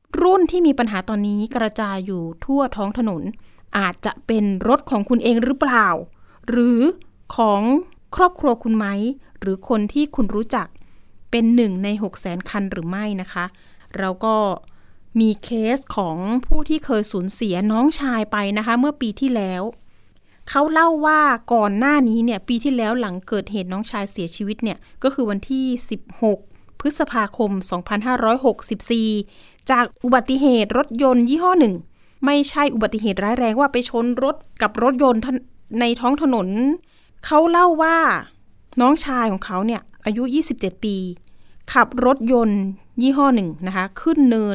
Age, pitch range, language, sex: 30-49, 210-265 Hz, Thai, female